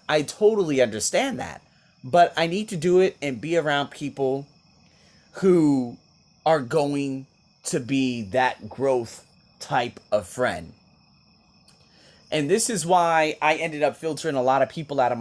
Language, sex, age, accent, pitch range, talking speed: English, male, 30-49, American, 120-170 Hz, 150 wpm